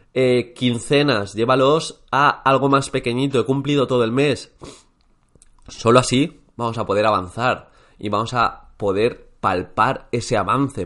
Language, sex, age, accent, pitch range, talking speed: Spanish, male, 20-39, Spanish, 100-135 Hz, 140 wpm